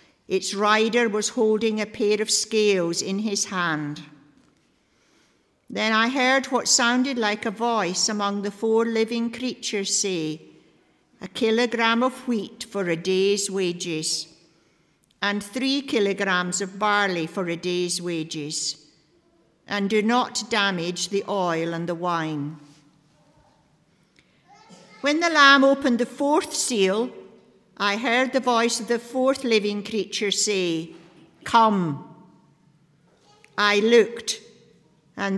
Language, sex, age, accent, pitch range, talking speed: English, female, 50-69, British, 175-220 Hz, 120 wpm